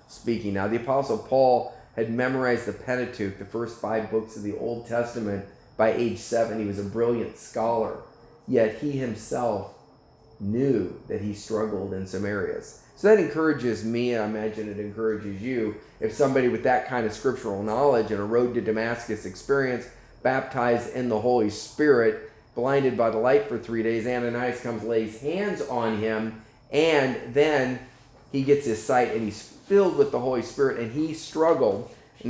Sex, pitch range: male, 110-135 Hz